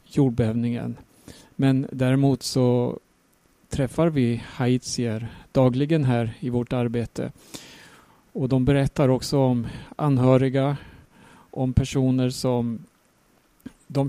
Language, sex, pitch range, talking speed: Swedish, male, 125-140 Hz, 95 wpm